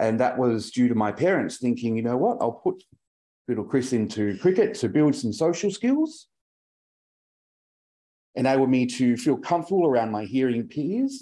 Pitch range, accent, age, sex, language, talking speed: 105-140 Hz, Australian, 40-59, male, English, 165 wpm